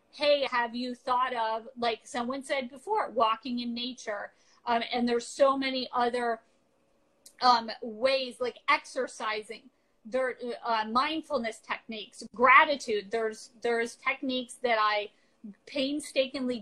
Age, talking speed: 40-59, 120 wpm